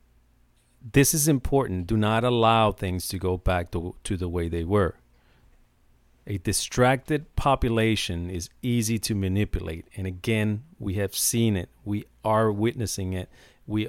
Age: 40-59